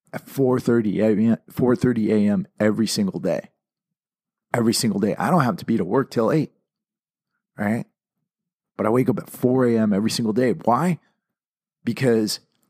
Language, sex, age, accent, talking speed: English, male, 40-59, American, 150 wpm